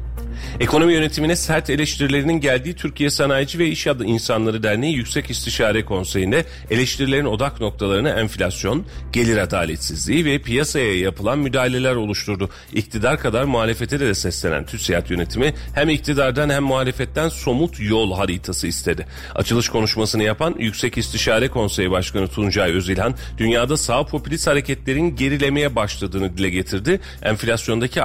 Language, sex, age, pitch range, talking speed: Turkish, male, 40-59, 95-130 Hz, 125 wpm